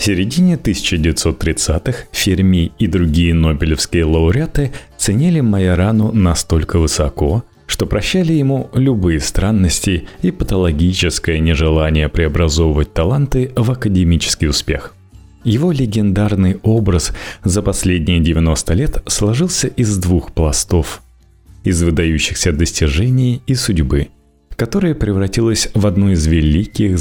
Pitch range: 80-110 Hz